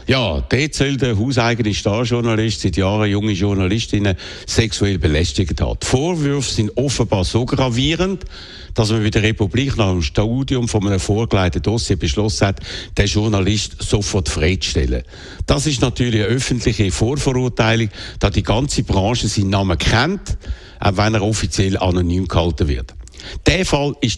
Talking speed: 145 wpm